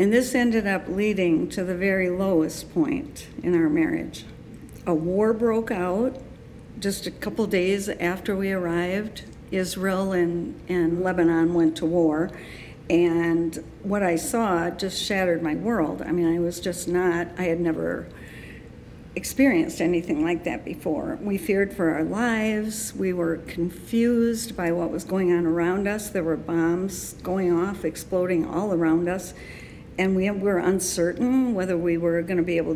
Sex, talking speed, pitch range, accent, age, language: female, 160 wpm, 170-205 Hz, American, 60-79, English